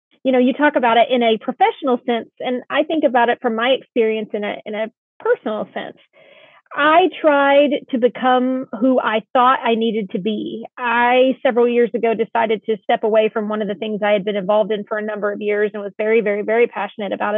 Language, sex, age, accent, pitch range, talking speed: English, female, 30-49, American, 225-260 Hz, 225 wpm